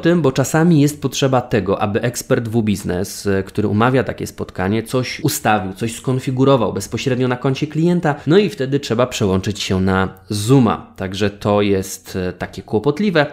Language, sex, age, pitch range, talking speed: Polish, male, 20-39, 100-135 Hz, 160 wpm